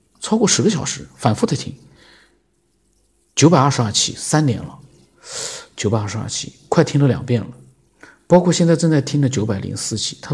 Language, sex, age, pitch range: Chinese, male, 50-69, 110-135 Hz